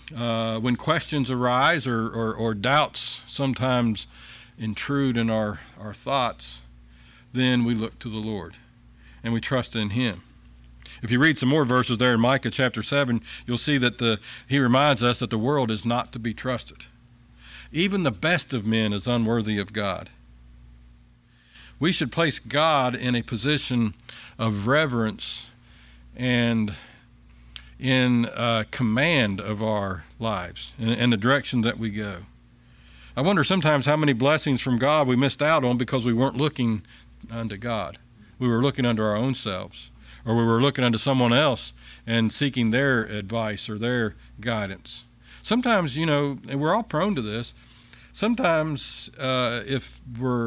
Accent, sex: American, male